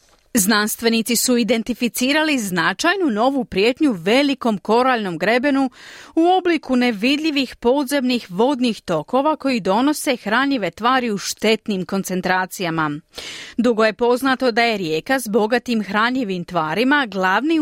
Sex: female